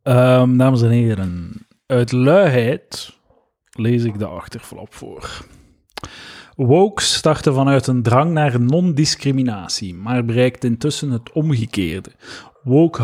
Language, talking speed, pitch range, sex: Dutch, 105 wpm, 115-140 Hz, male